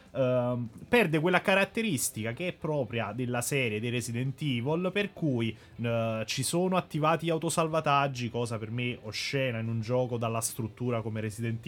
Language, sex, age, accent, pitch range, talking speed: Italian, male, 20-39, native, 120-160 Hz, 150 wpm